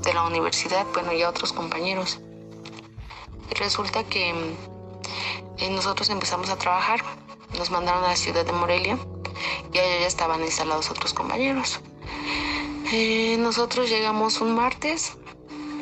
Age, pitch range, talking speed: 30-49, 155-205 Hz, 135 wpm